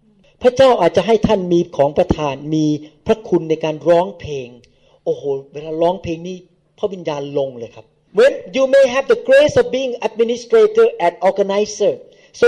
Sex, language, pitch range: male, Thai, 205-275 Hz